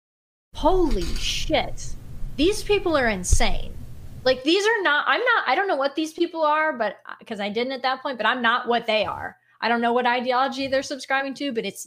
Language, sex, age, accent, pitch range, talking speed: English, female, 20-39, American, 205-270 Hz, 210 wpm